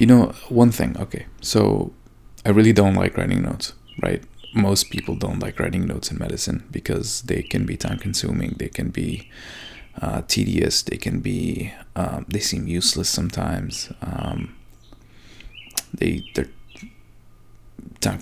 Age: 20-39